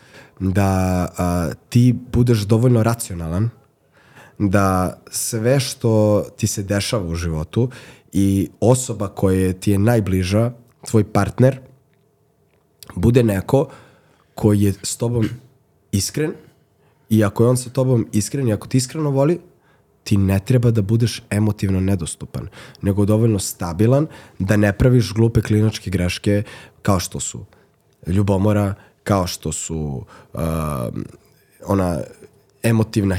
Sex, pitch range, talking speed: male, 100-120 Hz, 120 wpm